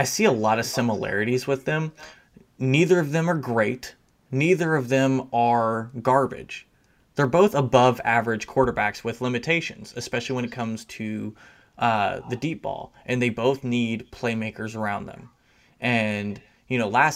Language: English